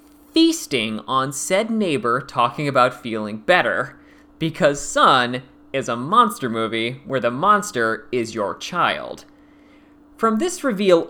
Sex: male